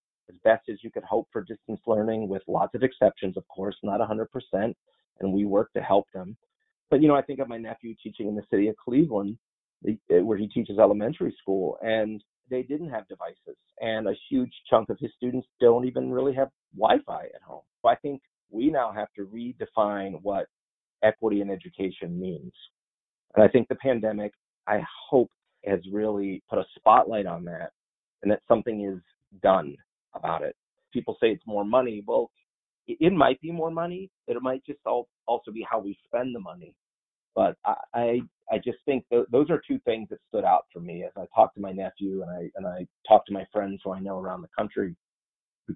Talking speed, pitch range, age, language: 200 wpm, 95-130 Hz, 40-59, English